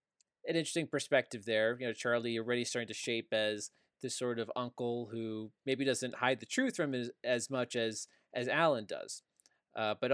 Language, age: English, 20-39